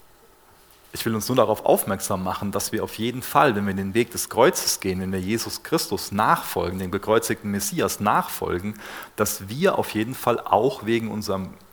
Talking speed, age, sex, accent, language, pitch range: 185 wpm, 40-59, male, German, German, 95-120 Hz